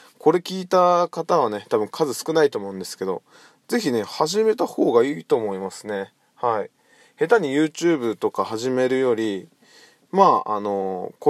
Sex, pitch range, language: male, 120-180 Hz, Japanese